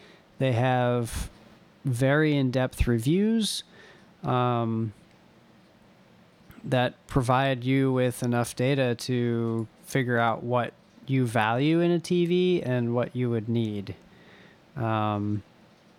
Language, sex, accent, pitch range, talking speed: English, male, American, 120-145 Hz, 100 wpm